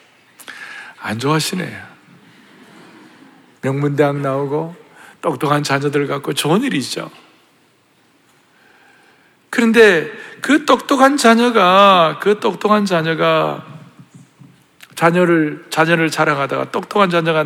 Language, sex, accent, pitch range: Korean, male, native, 145-240 Hz